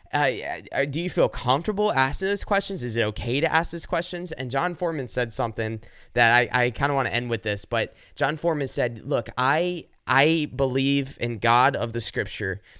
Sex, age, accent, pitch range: male, 20-39, American, 115-165 Hz